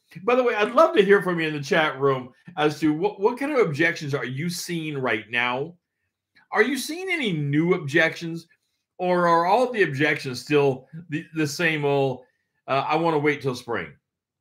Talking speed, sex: 200 wpm, male